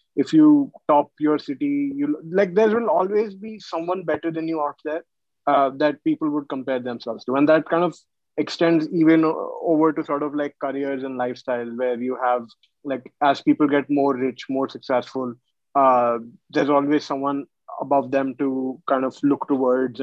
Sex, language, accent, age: male, English, Indian, 20-39